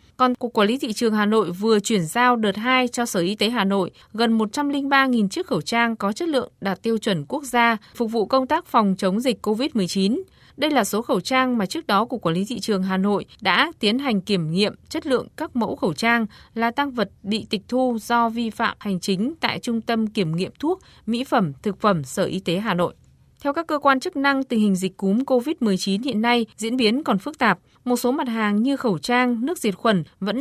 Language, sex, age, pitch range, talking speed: Vietnamese, female, 20-39, 200-250 Hz, 240 wpm